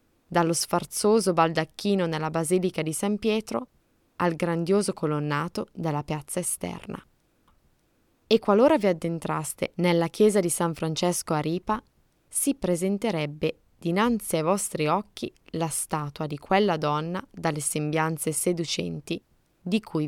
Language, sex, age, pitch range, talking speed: Italian, female, 20-39, 155-195 Hz, 125 wpm